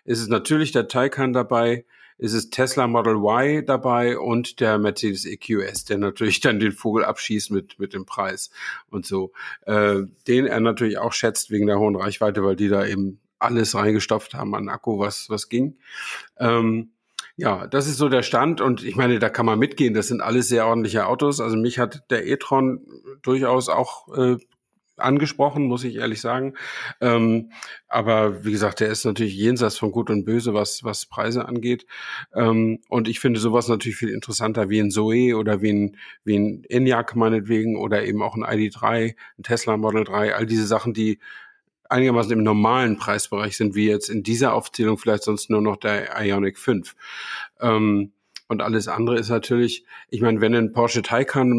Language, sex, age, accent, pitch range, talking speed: German, male, 50-69, German, 105-125 Hz, 190 wpm